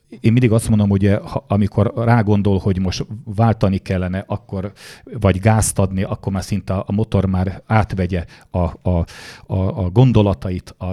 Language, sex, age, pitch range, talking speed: Hungarian, male, 40-59, 95-115 Hz, 160 wpm